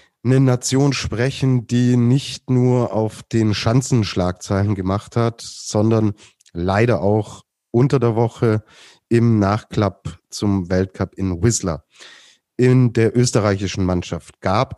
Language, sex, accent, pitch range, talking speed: German, male, German, 105-125 Hz, 115 wpm